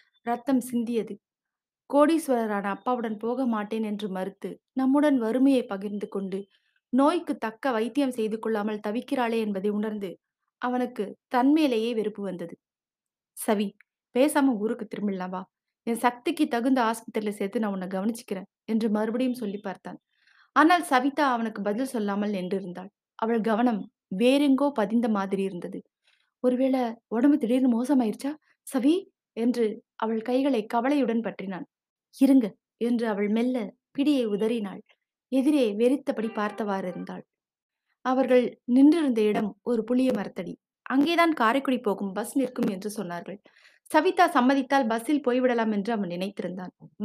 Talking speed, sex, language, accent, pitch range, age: 115 wpm, female, Tamil, native, 210-265 Hz, 20-39